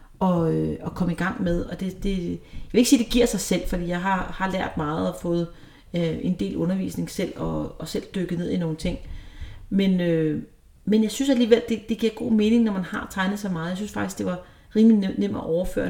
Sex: female